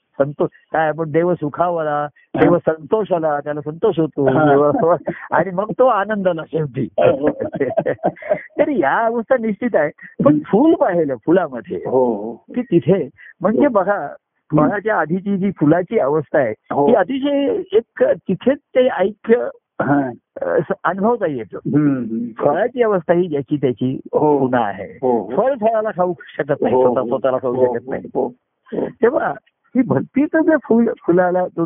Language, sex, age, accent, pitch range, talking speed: Marathi, male, 50-69, native, 140-225 Hz, 110 wpm